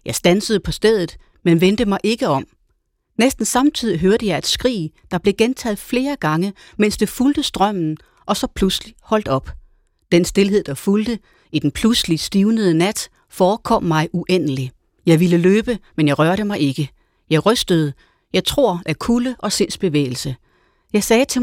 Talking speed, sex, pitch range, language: 170 wpm, female, 160-215 Hz, Danish